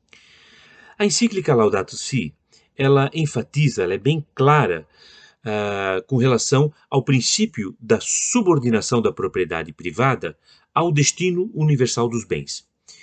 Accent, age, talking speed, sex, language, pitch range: Brazilian, 40-59, 110 wpm, male, Portuguese, 115-160 Hz